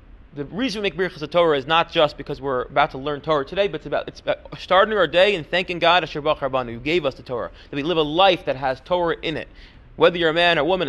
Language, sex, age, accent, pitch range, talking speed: English, male, 30-49, American, 155-200 Hz, 275 wpm